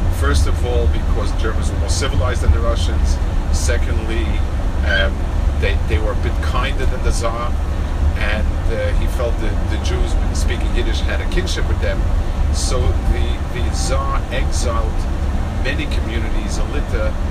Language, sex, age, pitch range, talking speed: English, male, 40-59, 75-85 Hz, 155 wpm